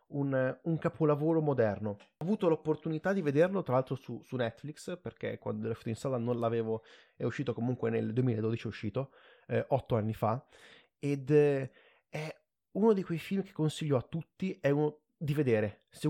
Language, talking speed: Italian, 180 wpm